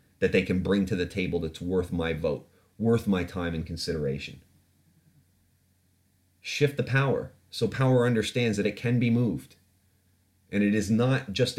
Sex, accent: male, American